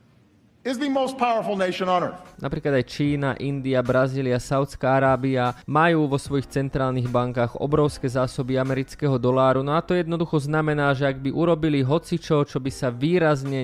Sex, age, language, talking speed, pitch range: male, 20-39, Czech, 130 wpm, 125-150 Hz